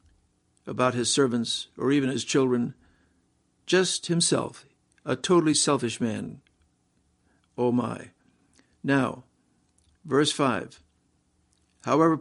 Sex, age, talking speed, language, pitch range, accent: male, 60-79, 95 wpm, English, 120-150 Hz, American